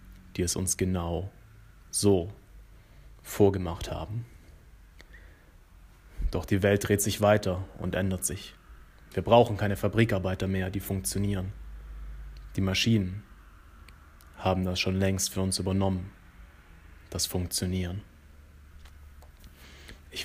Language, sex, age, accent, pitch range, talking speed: German, male, 30-49, German, 85-105 Hz, 105 wpm